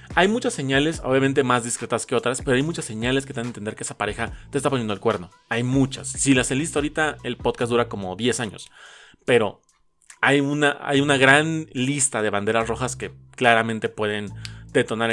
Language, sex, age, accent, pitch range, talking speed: Spanish, male, 30-49, Mexican, 105-140 Hz, 205 wpm